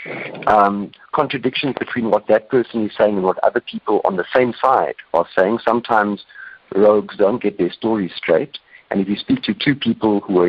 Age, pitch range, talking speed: 50-69, 95-130 Hz, 195 wpm